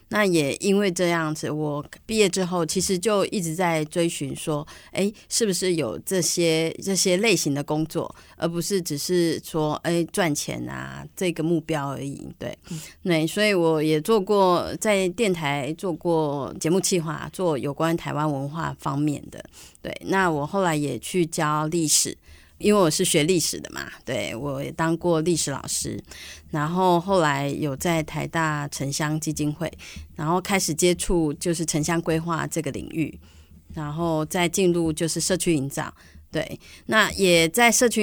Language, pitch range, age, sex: Chinese, 150-180 Hz, 30-49, female